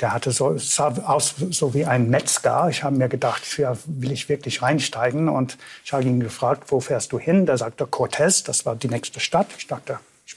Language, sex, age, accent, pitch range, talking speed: German, male, 60-79, German, 125-155 Hz, 220 wpm